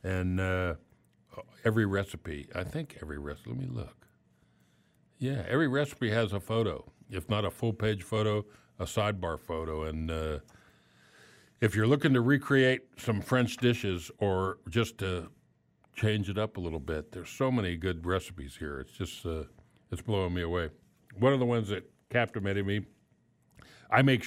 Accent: American